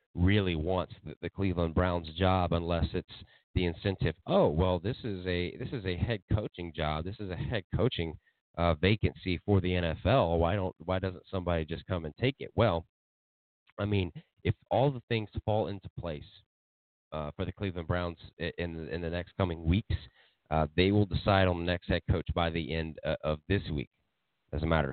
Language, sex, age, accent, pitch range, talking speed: English, male, 30-49, American, 85-105 Hz, 195 wpm